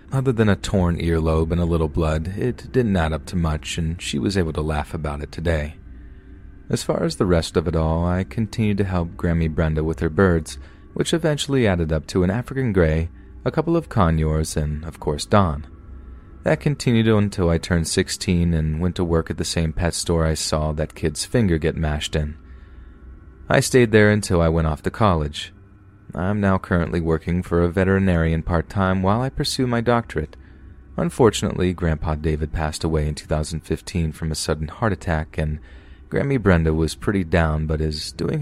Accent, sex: American, male